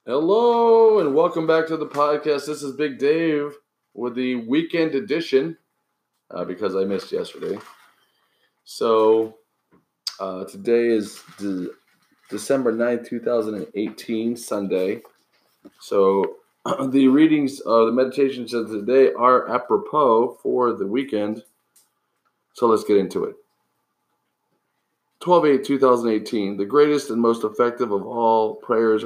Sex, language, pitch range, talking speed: male, English, 110-155 Hz, 120 wpm